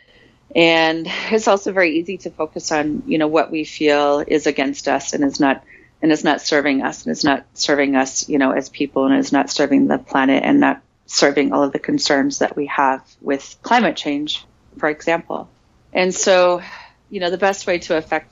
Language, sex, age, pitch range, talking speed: English, female, 30-49, 140-160 Hz, 205 wpm